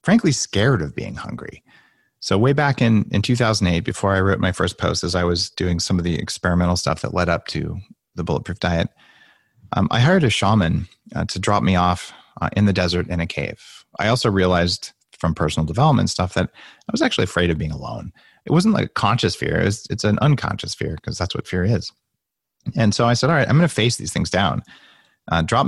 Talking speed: 225 wpm